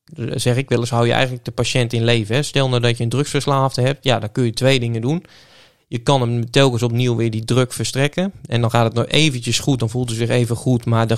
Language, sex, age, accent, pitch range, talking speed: Dutch, male, 20-39, Dutch, 115-130 Hz, 265 wpm